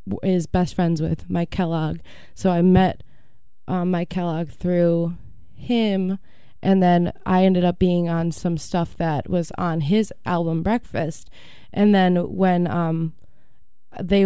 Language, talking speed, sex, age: English, 145 wpm, female, 20-39